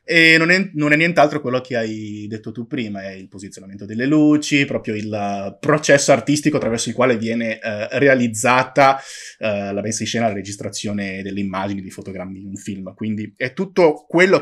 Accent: native